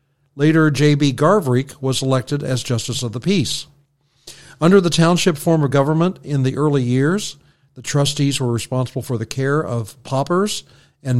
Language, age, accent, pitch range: English, 50-69, American, 125-150 Hz